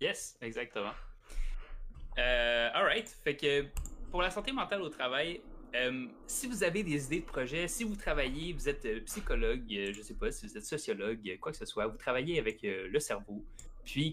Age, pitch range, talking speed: 20-39, 115-155 Hz, 195 wpm